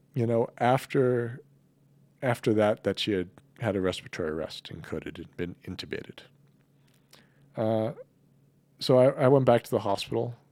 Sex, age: male, 40-59